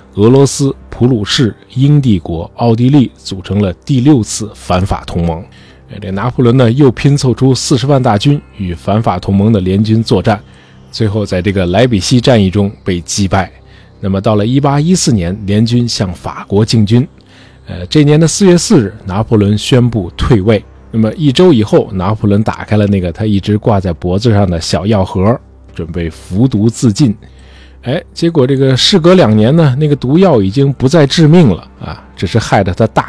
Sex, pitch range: male, 95-130 Hz